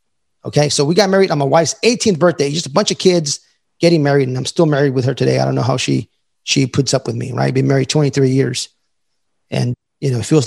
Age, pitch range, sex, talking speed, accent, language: 30-49, 135-180 Hz, male, 260 wpm, American, English